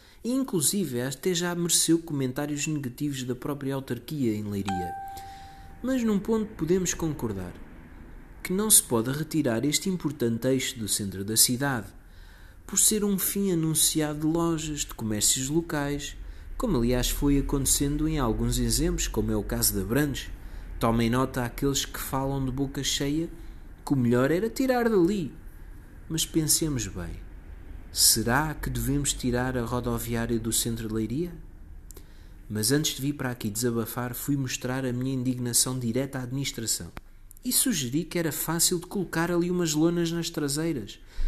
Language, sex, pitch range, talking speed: Portuguese, male, 110-165 Hz, 155 wpm